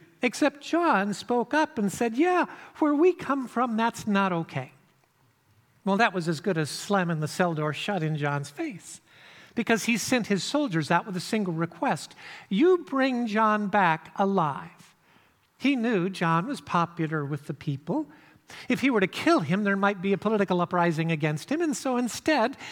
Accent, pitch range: American, 170-255 Hz